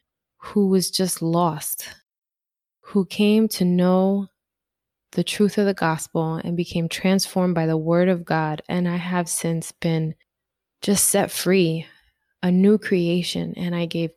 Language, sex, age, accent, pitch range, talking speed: English, female, 20-39, American, 170-195 Hz, 150 wpm